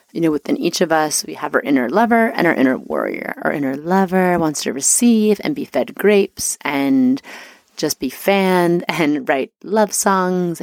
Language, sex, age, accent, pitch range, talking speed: English, female, 30-49, American, 160-215 Hz, 185 wpm